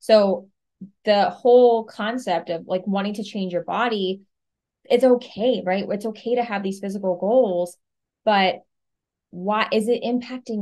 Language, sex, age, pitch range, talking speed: English, female, 20-39, 185-220 Hz, 145 wpm